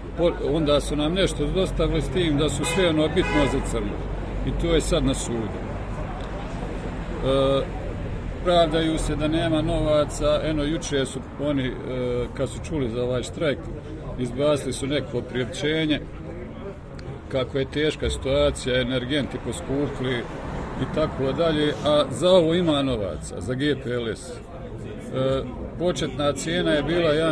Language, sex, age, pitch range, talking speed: Croatian, male, 50-69, 125-155 Hz, 135 wpm